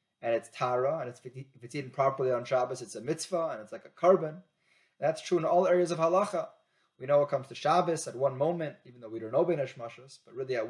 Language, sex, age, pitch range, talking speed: English, male, 20-39, 130-175 Hz, 260 wpm